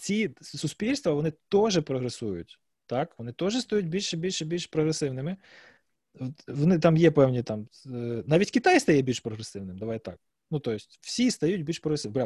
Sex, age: male, 20-39